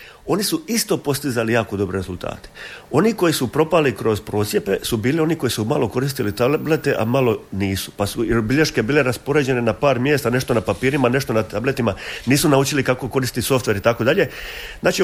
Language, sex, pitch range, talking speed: Croatian, male, 105-145 Hz, 190 wpm